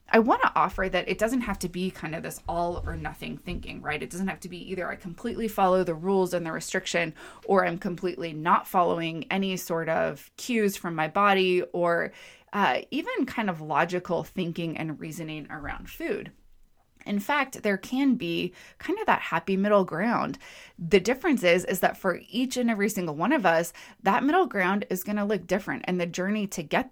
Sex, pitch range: female, 170-210 Hz